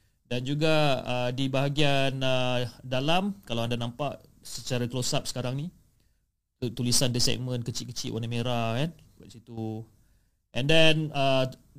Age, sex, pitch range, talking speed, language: 30-49, male, 115-140 Hz, 135 wpm, Malay